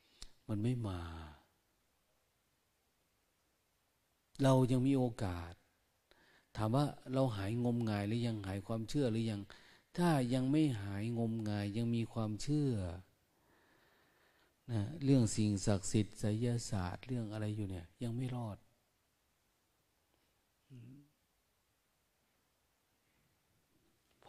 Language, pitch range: Thai, 95-120 Hz